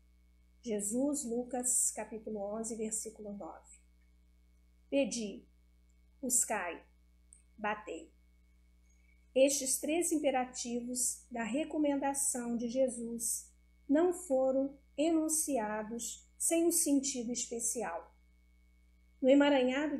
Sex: female